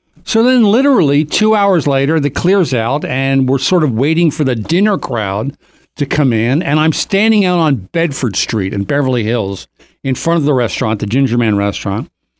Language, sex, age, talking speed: English, male, 60-79, 195 wpm